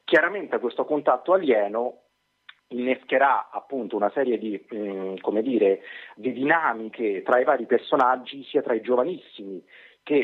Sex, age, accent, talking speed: male, 30-49, native, 135 wpm